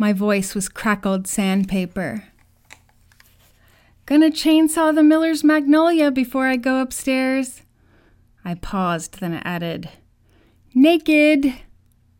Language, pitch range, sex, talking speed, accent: English, 170-220 Hz, female, 95 wpm, American